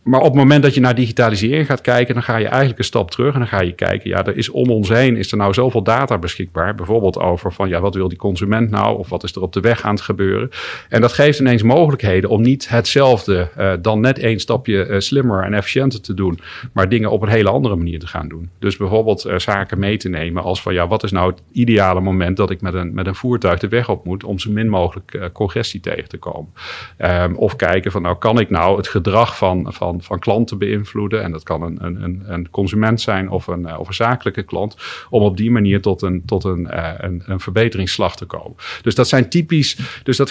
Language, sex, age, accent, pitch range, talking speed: Dutch, male, 40-59, Dutch, 95-120 Hz, 240 wpm